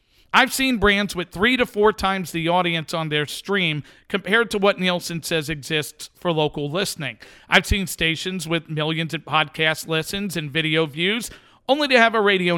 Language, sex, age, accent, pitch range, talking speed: English, male, 50-69, American, 165-215 Hz, 180 wpm